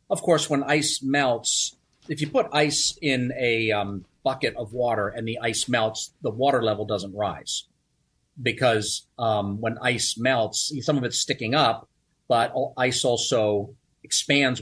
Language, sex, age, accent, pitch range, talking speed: English, male, 40-59, American, 110-145 Hz, 155 wpm